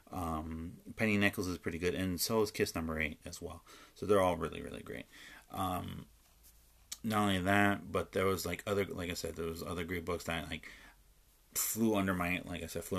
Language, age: English, 30-49